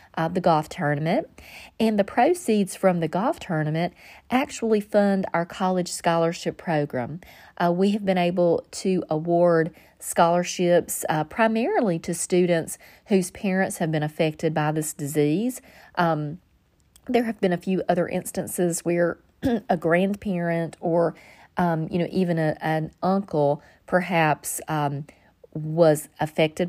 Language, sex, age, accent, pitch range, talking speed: English, female, 40-59, American, 160-190 Hz, 135 wpm